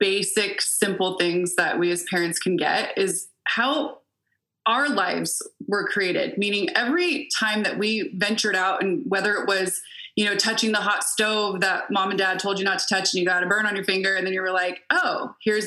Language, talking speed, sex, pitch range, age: English, 215 wpm, female, 190-225 Hz, 20-39